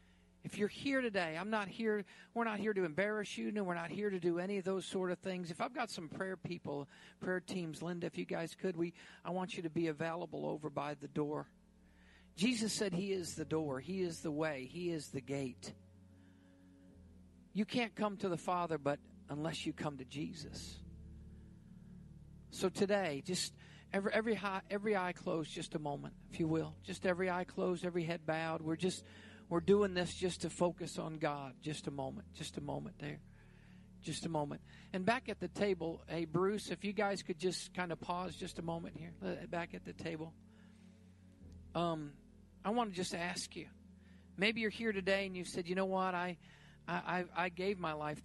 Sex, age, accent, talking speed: male, 50-69, American, 205 wpm